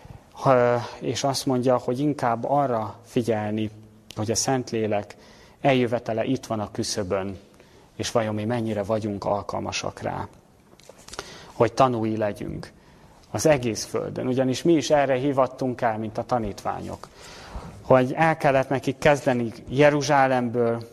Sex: male